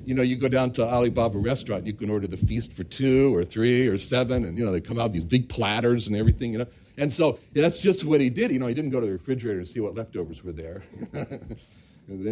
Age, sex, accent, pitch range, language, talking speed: 60-79, male, American, 120-165 Hz, English, 270 wpm